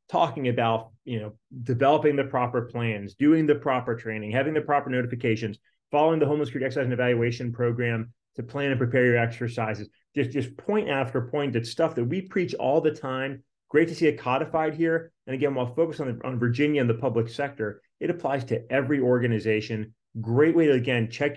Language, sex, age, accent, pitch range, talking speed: English, male, 30-49, American, 115-140 Hz, 200 wpm